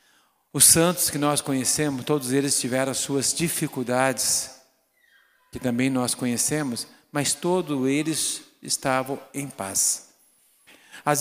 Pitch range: 120-150 Hz